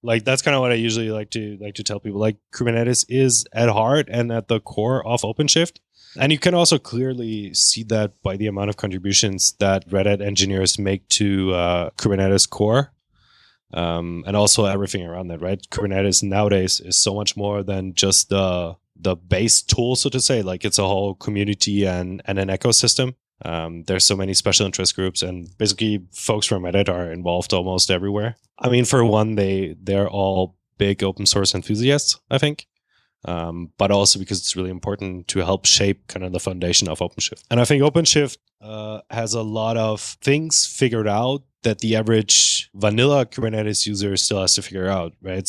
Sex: male